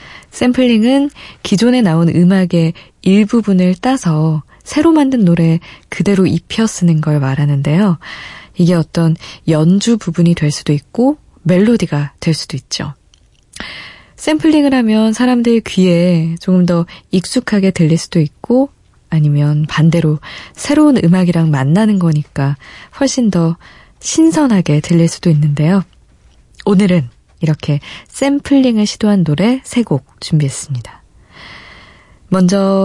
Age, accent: 20-39, native